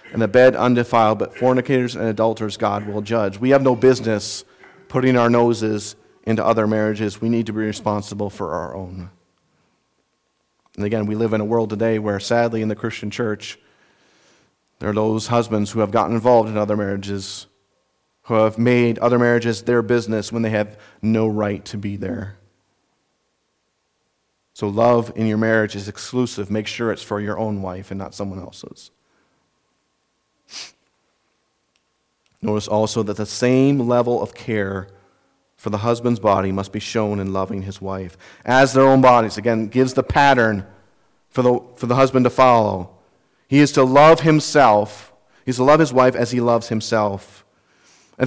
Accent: American